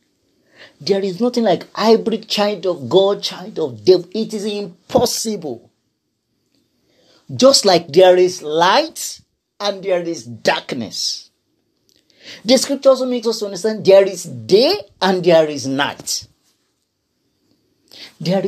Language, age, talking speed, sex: English, 40-59, 120 wpm, male